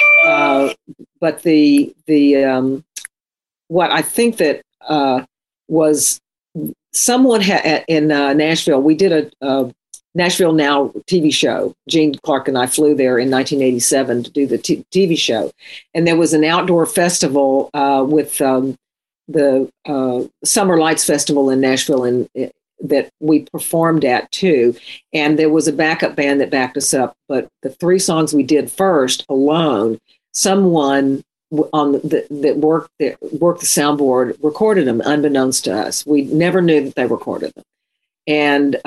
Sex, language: female, English